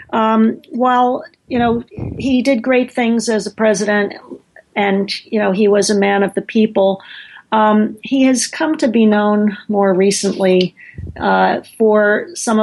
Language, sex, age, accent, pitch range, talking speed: English, female, 40-59, American, 190-220 Hz, 155 wpm